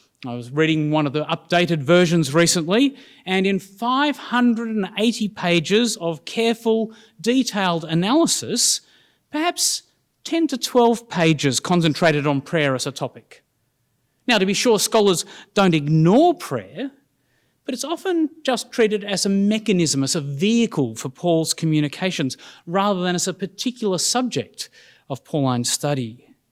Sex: male